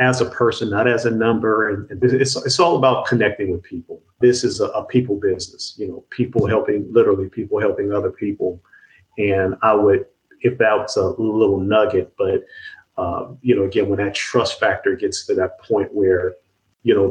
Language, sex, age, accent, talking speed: English, male, 40-59, American, 195 wpm